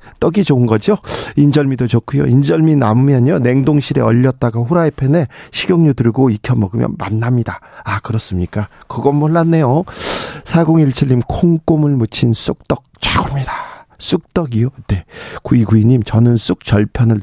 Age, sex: 40-59, male